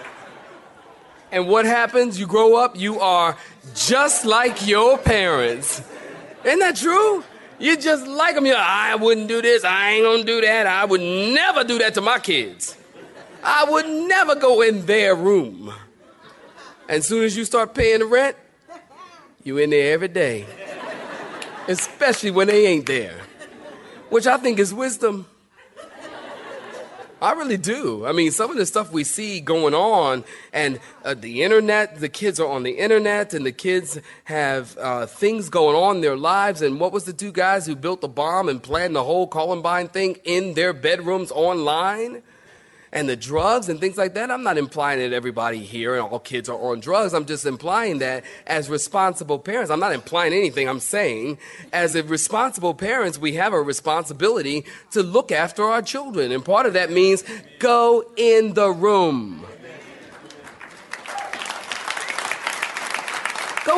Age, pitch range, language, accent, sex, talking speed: 30-49, 170-240 Hz, English, American, male, 170 wpm